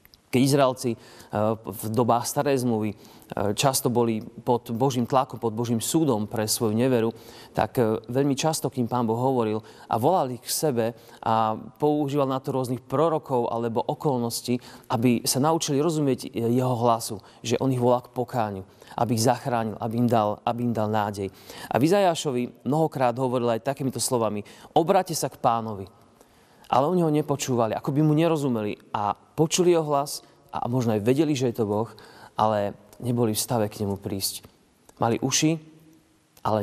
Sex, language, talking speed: male, Slovak, 160 wpm